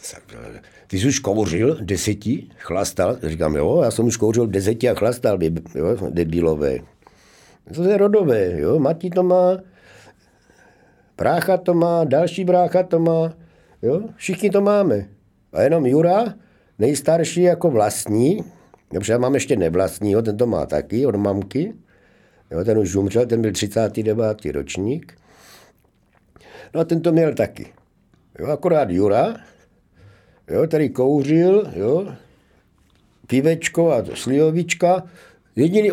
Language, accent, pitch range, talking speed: Czech, native, 105-175 Hz, 130 wpm